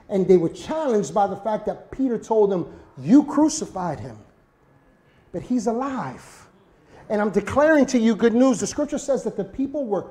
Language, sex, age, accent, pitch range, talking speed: English, male, 30-49, American, 205-275 Hz, 185 wpm